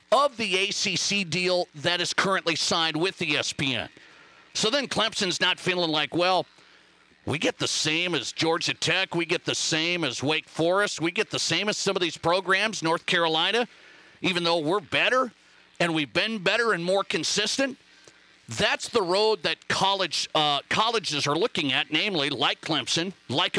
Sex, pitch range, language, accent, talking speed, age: male, 160-200 Hz, English, American, 175 wpm, 40-59